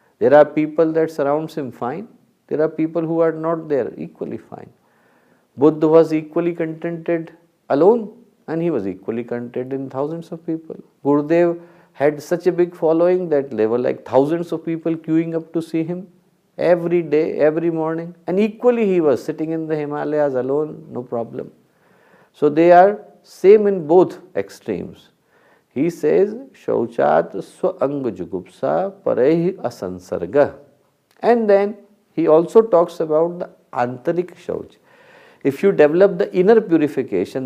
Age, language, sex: 50-69, English, male